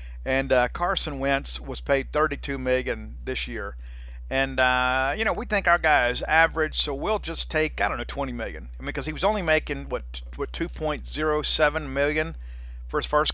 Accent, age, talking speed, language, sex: American, 50-69, 195 wpm, English, male